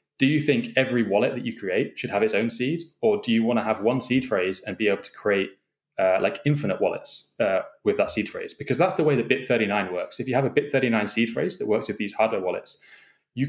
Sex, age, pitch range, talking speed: male, 20-39, 105-135 Hz, 255 wpm